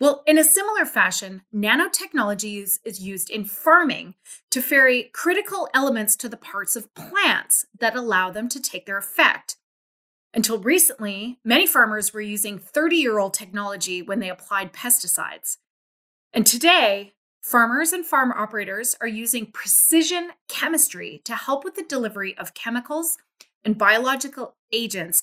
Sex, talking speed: female, 140 wpm